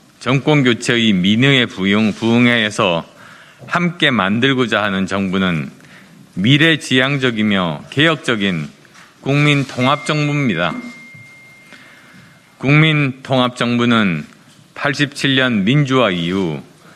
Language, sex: Korean, male